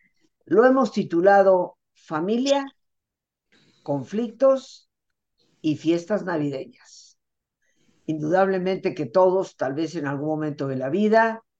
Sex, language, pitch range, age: female, Spanish, 145-195 Hz, 50-69